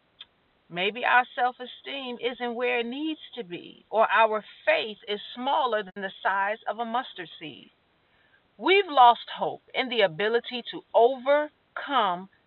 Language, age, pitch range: English, 40-59, 205-310 Hz